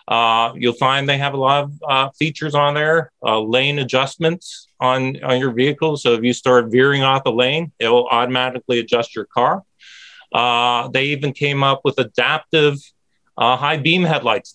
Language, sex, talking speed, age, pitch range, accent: English, male, 180 wpm, 40-59, 120-140 Hz, American